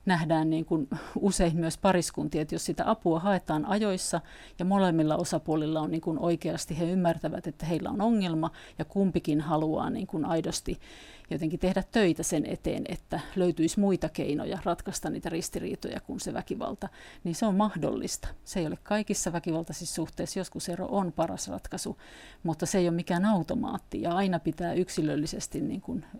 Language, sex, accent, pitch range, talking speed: English, female, Finnish, 160-190 Hz, 165 wpm